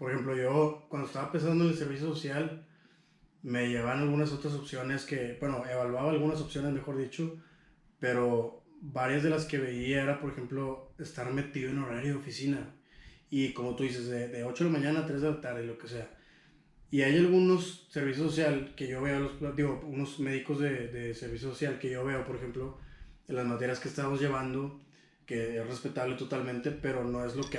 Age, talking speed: 20-39, 200 wpm